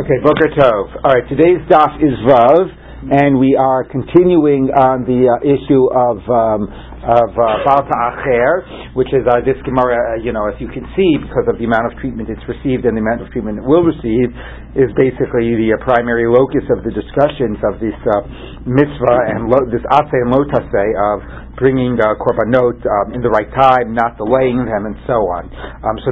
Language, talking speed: English, 195 wpm